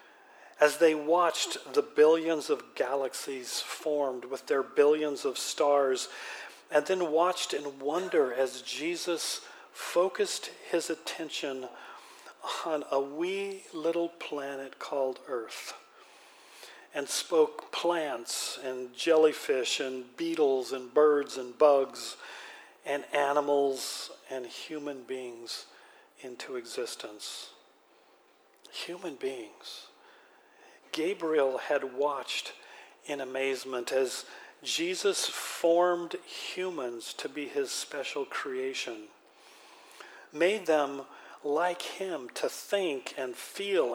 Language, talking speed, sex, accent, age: English, 100 wpm, male, American, 50-69